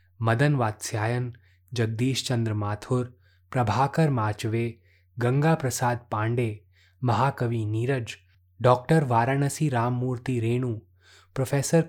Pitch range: 105-130 Hz